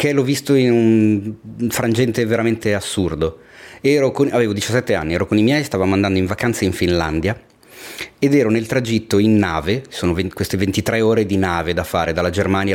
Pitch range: 85-120 Hz